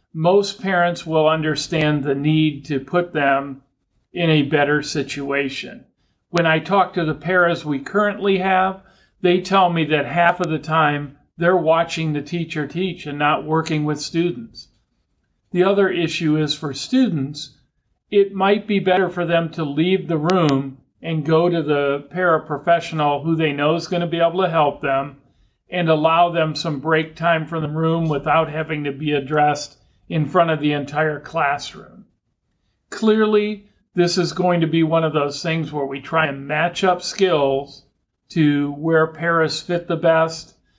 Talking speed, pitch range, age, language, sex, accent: 170 wpm, 145-175 Hz, 50-69, English, male, American